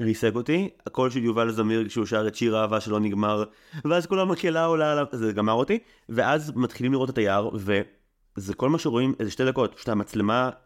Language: Hebrew